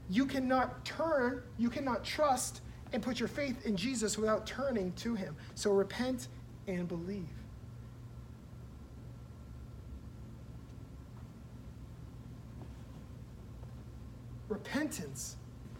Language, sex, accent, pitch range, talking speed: English, male, American, 170-220 Hz, 80 wpm